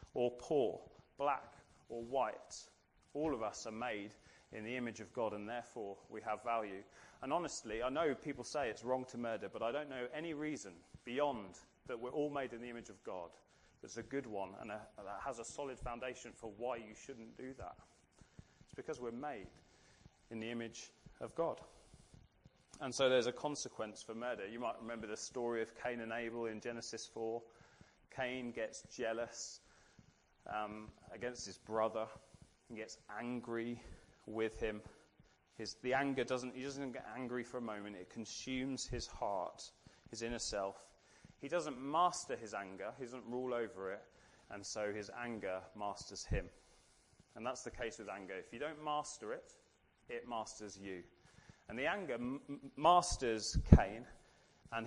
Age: 30-49